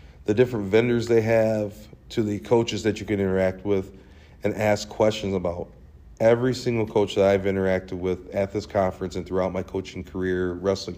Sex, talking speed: male, 180 wpm